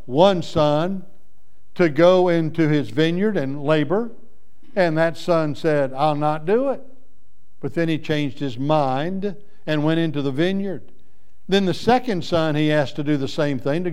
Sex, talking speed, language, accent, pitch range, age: male, 170 wpm, English, American, 140-180 Hz, 60-79